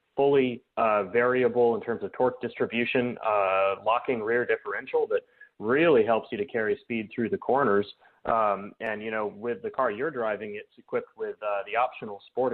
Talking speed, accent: 180 wpm, American